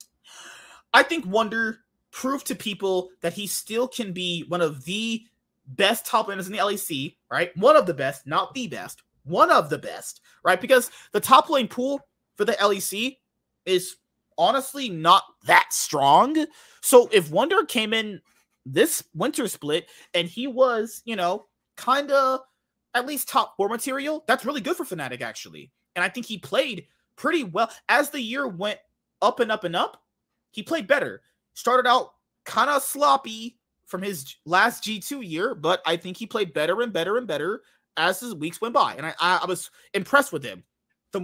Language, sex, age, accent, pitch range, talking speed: English, male, 30-49, American, 185-265 Hz, 180 wpm